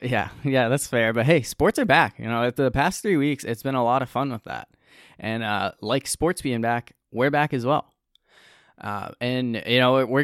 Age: 20-39